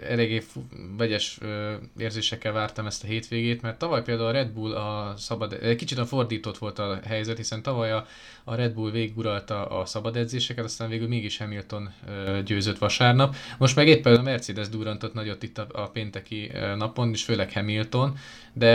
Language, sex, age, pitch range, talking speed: Hungarian, male, 20-39, 105-120 Hz, 165 wpm